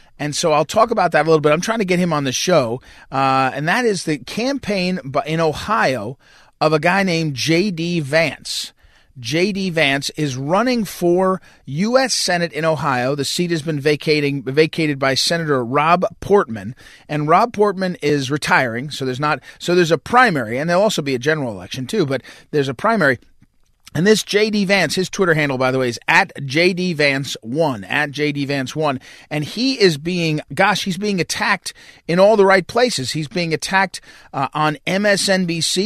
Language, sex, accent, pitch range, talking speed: English, male, American, 140-180 Hz, 185 wpm